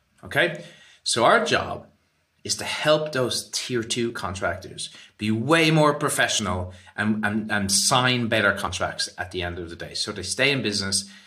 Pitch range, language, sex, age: 100-130 Hz, English, male, 30-49